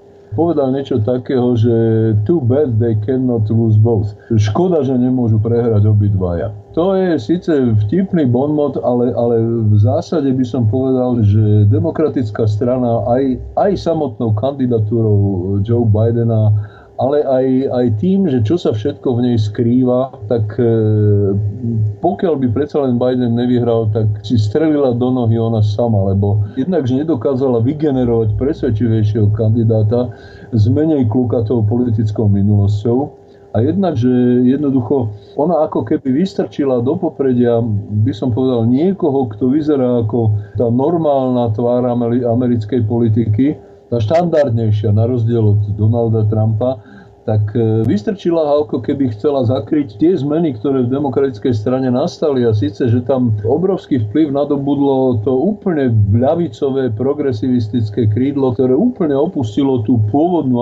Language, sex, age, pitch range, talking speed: Slovak, male, 40-59, 110-135 Hz, 130 wpm